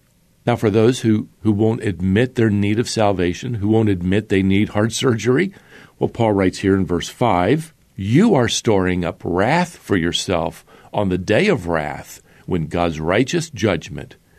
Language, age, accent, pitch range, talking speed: English, 50-69, American, 95-130 Hz, 170 wpm